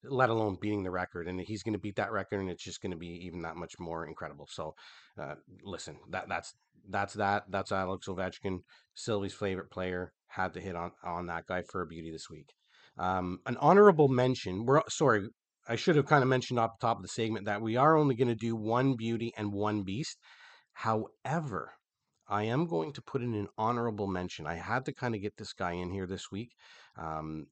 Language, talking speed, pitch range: English, 215 wpm, 95-135 Hz